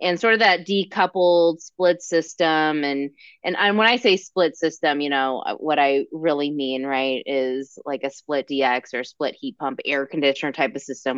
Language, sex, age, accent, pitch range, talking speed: English, female, 20-39, American, 145-200 Hz, 190 wpm